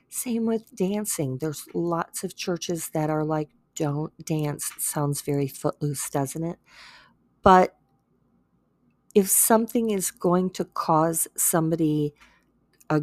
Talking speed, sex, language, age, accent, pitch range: 120 wpm, female, English, 40-59, American, 155-185 Hz